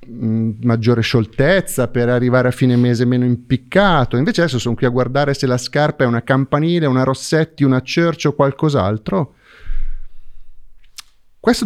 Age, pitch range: 30-49, 105-145 Hz